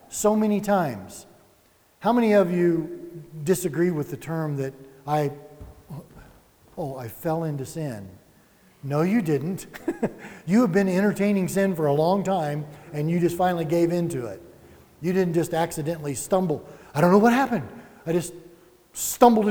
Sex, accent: male, American